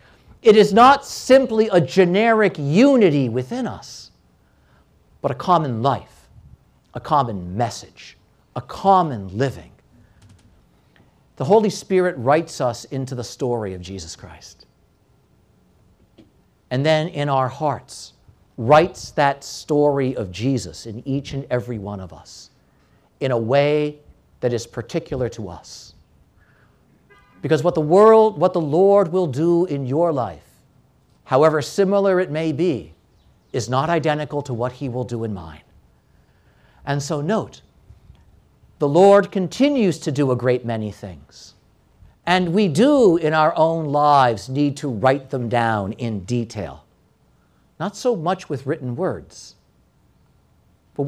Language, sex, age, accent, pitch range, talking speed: English, male, 50-69, American, 110-165 Hz, 135 wpm